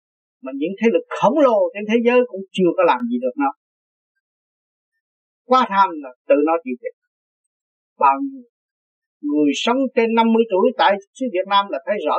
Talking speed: 175 wpm